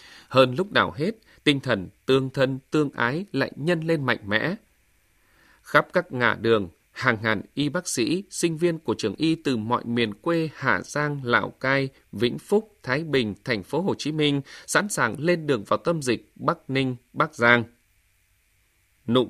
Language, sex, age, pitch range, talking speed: Vietnamese, male, 20-39, 115-165 Hz, 180 wpm